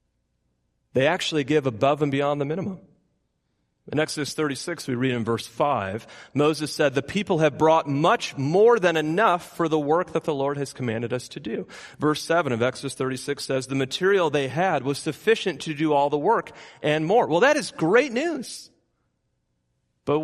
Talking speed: 185 wpm